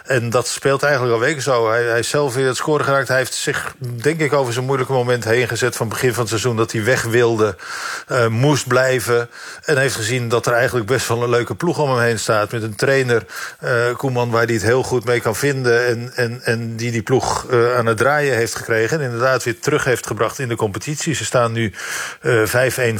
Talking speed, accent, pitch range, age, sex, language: 235 wpm, Dutch, 115-130 Hz, 50-69, male, Dutch